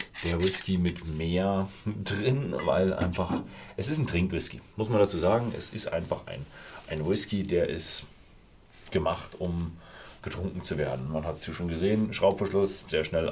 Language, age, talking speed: German, 40-59, 160 wpm